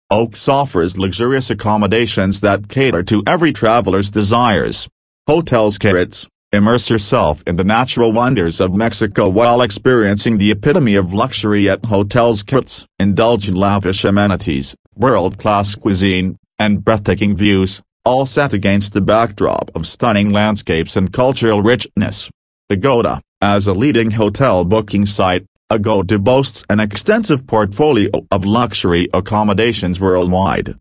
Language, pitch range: English, 95-115 Hz